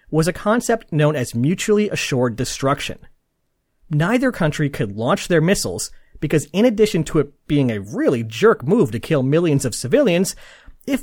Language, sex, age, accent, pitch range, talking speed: English, male, 30-49, American, 135-210 Hz, 165 wpm